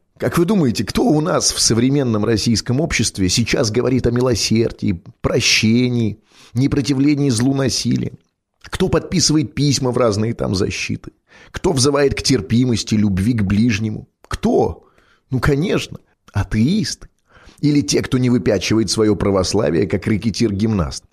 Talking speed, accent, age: 130 wpm, native, 30-49